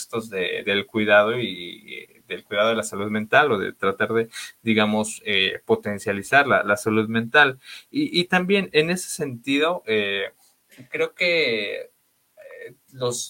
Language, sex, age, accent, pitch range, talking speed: Spanish, male, 30-49, Mexican, 110-150 Hz, 140 wpm